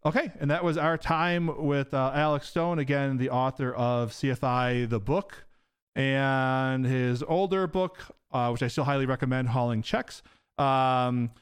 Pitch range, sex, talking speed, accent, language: 115-150 Hz, male, 160 wpm, American, English